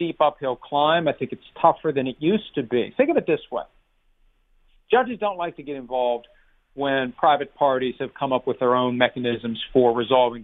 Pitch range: 135-170 Hz